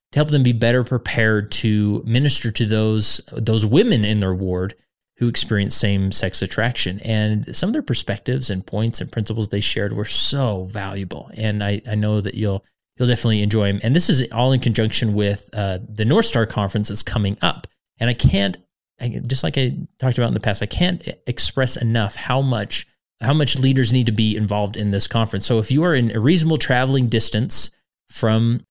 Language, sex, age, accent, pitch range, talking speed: English, male, 30-49, American, 105-125 Hz, 200 wpm